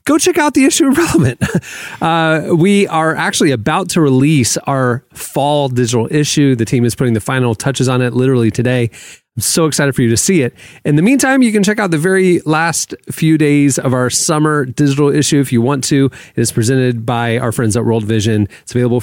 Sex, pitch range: male, 120-150 Hz